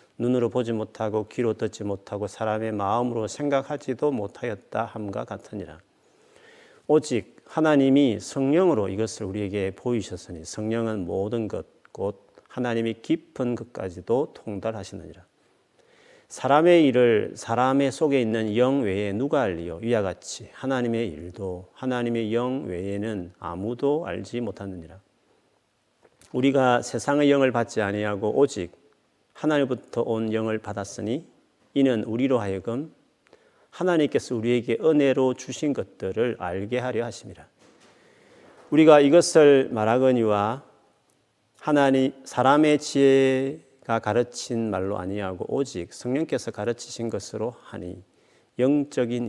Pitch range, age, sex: 105-135 Hz, 40-59, male